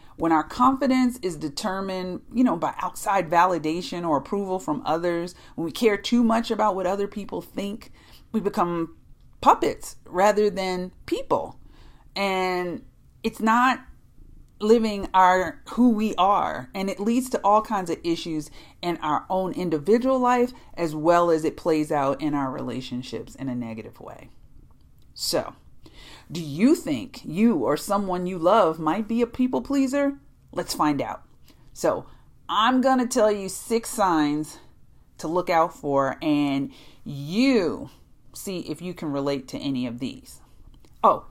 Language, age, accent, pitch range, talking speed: English, 40-59, American, 150-215 Hz, 155 wpm